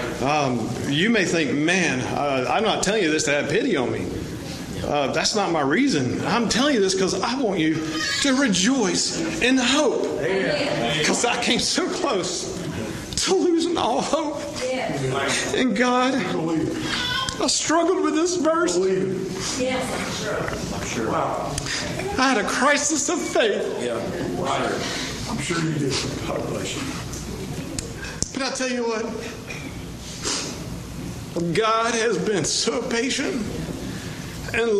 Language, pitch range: English, 175-250 Hz